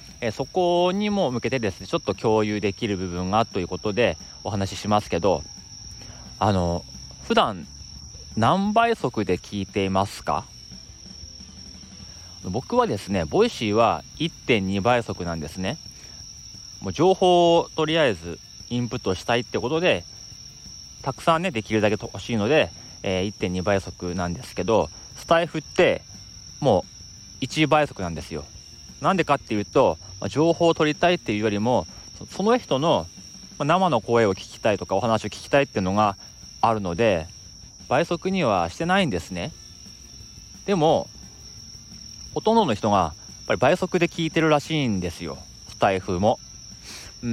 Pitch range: 95-145 Hz